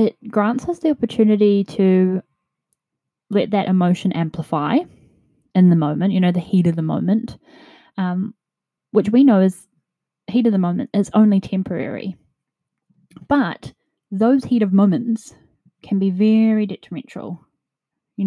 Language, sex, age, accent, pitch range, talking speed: English, female, 10-29, Australian, 165-205 Hz, 140 wpm